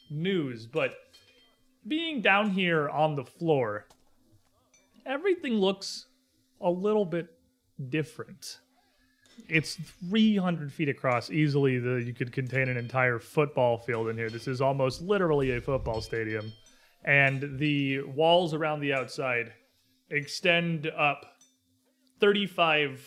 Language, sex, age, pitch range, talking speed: English, male, 30-49, 125-170 Hz, 115 wpm